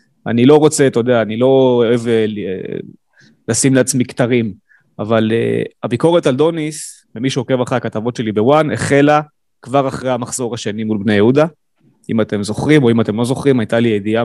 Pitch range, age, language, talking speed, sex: 115-145 Hz, 30-49, Hebrew, 175 wpm, male